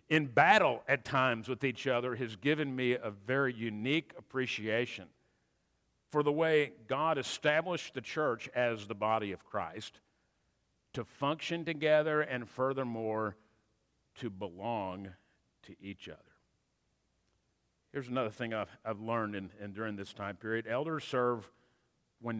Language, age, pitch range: English, 50-69, 120-155 Hz